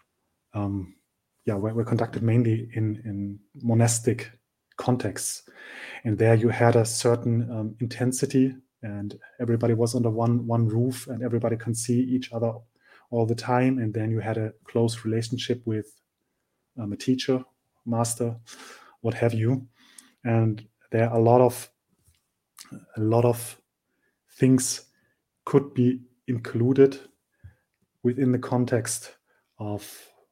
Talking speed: 130 wpm